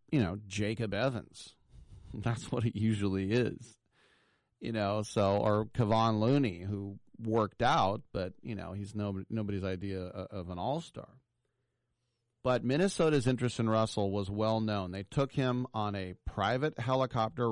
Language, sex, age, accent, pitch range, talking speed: English, male, 40-59, American, 105-125 Hz, 150 wpm